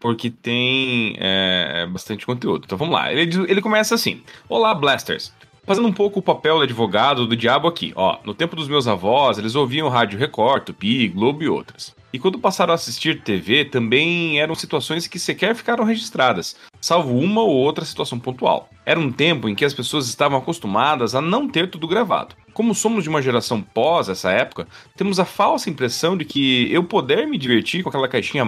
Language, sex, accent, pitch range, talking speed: Portuguese, male, Brazilian, 130-190 Hz, 190 wpm